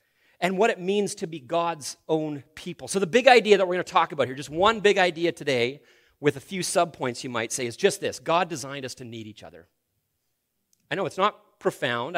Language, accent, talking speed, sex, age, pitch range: English, American, 230 wpm, male, 40-59, 140-200 Hz